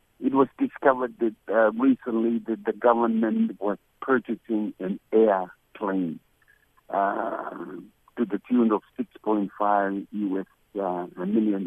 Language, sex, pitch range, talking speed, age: English, male, 100-120 Hz, 125 wpm, 60-79